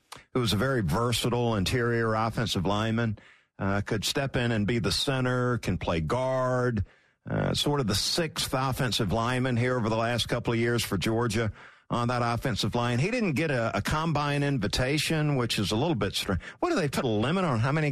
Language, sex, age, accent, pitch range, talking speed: English, male, 50-69, American, 115-170 Hz, 205 wpm